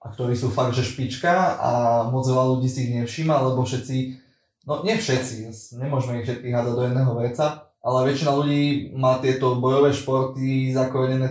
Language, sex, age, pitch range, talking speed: Slovak, male, 20-39, 115-130 Hz, 175 wpm